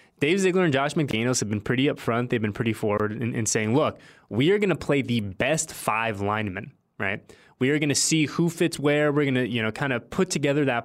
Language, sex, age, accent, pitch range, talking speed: English, male, 20-39, American, 110-150 Hz, 255 wpm